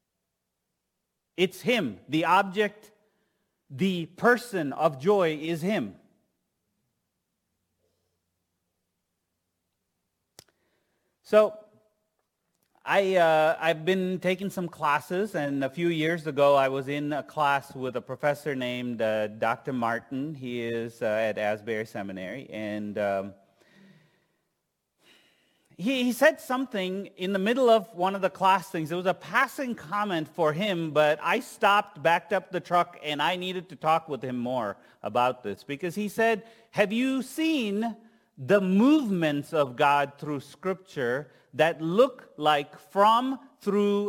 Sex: male